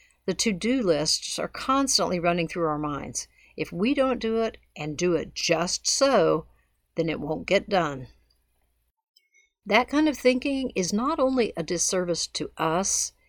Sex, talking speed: female, 160 wpm